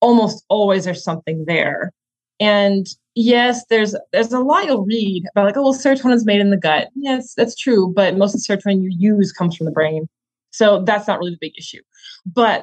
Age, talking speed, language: 20-39, 215 wpm, English